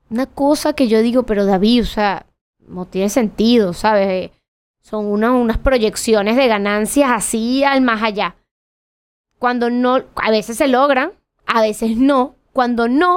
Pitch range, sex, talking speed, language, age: 215-270 Hz, female, 155 wpm, Spanish, 20-39